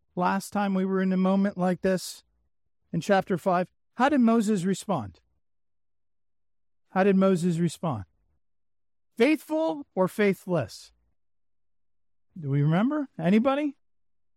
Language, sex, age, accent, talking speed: English, male, 50-69, American, 115 wpm